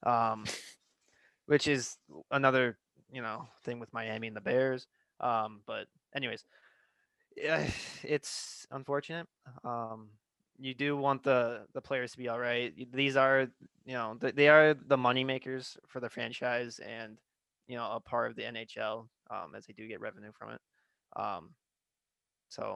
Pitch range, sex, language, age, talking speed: 115-135 Hz, male, English, 20-39, 155 wpm